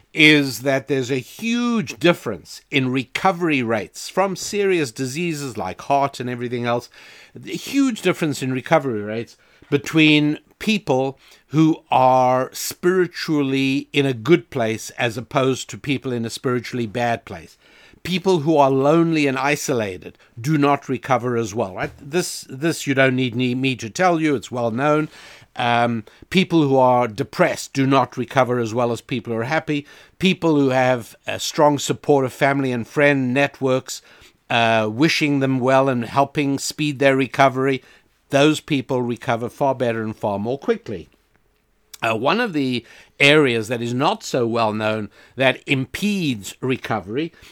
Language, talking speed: English, 155 wpm